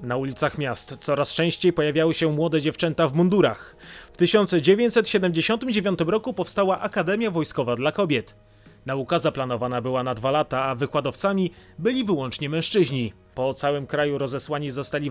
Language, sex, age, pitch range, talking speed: Polish, male, 30-49, 140-180 Hz, 140 wpm